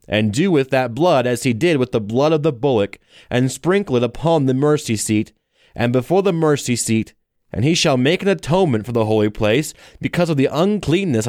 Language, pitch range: English, 115-155 Hz